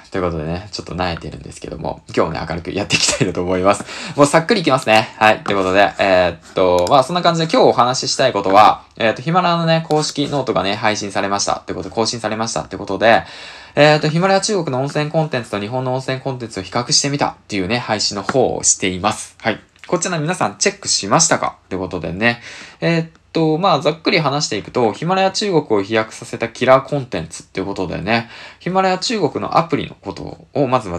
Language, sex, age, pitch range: Japanese, male, 20-39, 95-155 Hz